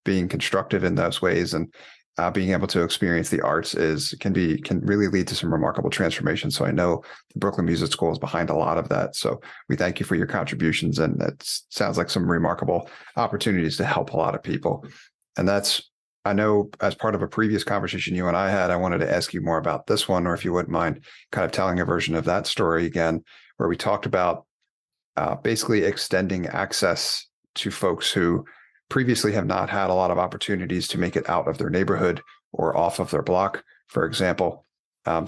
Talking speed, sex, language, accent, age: 215 wpm, male, English, American, 30-49